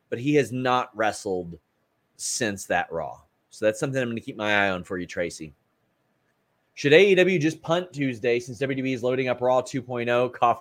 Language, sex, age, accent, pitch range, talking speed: English, male, 30-49, American, 120-160 Hz, 190 wpm